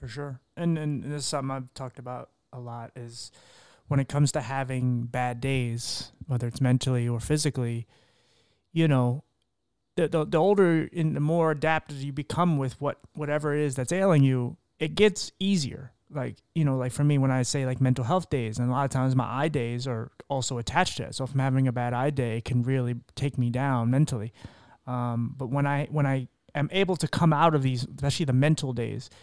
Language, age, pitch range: English, 30-49, 125-150 Hz